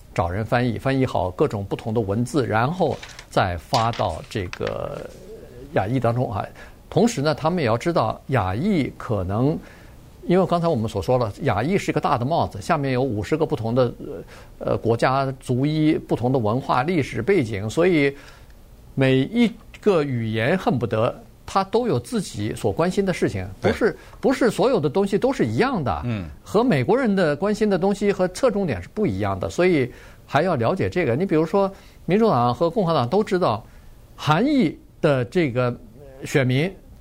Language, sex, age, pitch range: Chinese, male, 50-69, 120-185 Hz